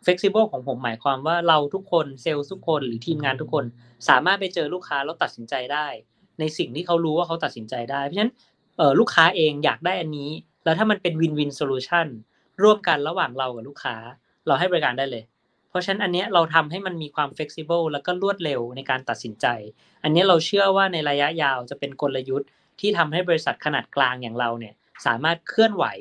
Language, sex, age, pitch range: Thai, female, 20-39, 140-180 Hz